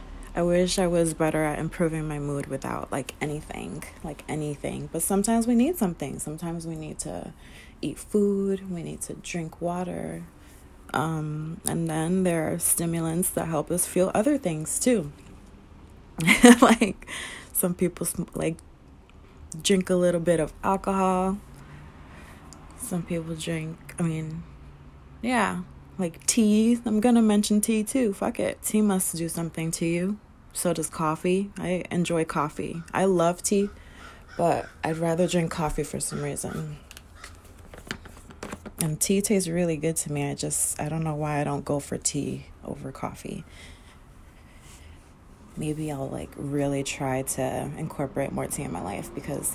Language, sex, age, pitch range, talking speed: English, female, 20-39, 130-180 Hz, 150 wpm